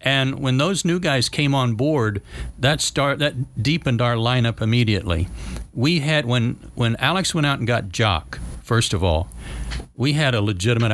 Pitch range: 105-155 Hz